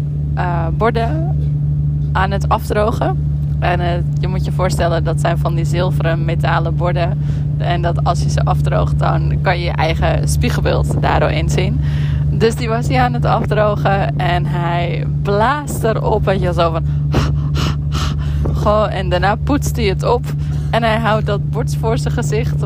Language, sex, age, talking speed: Dutch, female, 20-39, 165 wpm